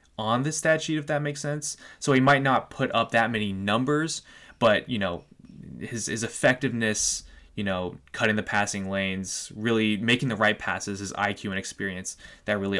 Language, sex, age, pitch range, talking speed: English, male, 10-29, 100-130 Hz, 190 wpm